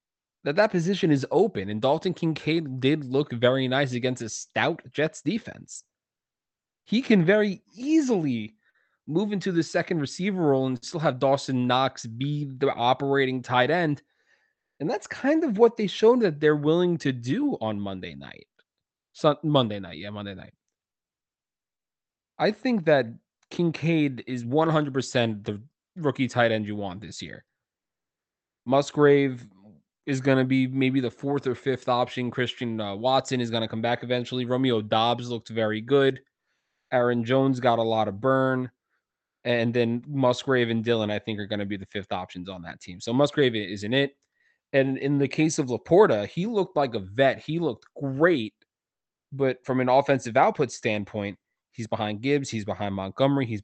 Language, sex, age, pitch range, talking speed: English, male, 20-39, 115-150 Hz, 170 wpm